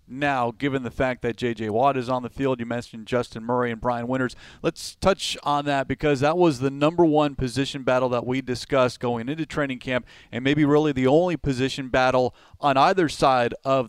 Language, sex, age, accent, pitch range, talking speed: English, male, 40-59, American, 125-150 Hz, 205 wpm